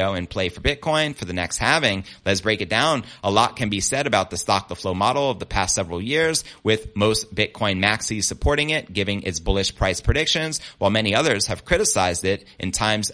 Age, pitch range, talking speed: 30-49, 95-115 Hz, 215 wpm